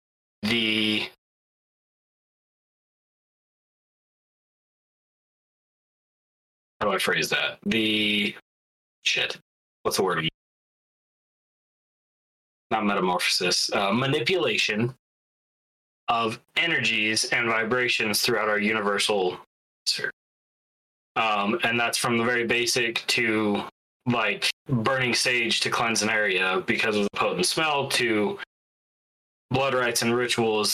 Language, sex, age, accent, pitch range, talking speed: English, male, 20-39, American, 105-125 Hz, 95 wpm